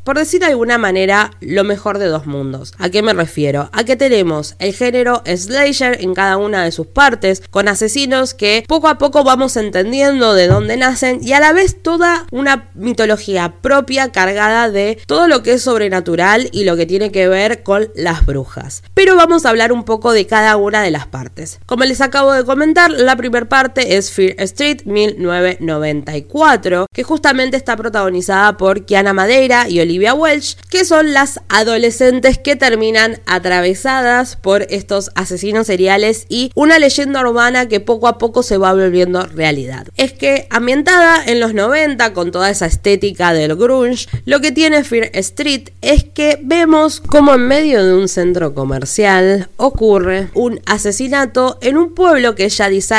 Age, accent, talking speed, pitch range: 20-39, Argentinian, 175 wpm, 195-270 Hz